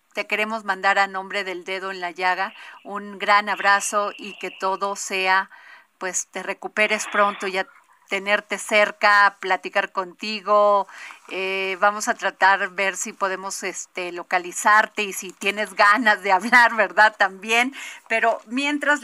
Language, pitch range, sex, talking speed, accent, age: Spanish, 195-230 Hz, female, 150 wpm, Mexican, 40-59